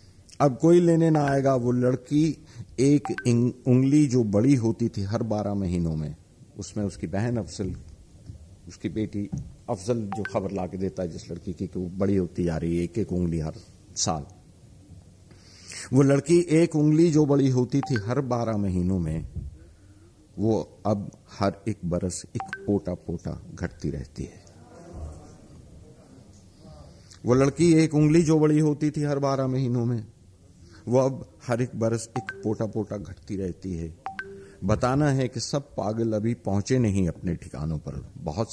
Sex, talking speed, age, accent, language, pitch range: male, 160 wpm, 50-69, native, Hindi, 90-130 Hz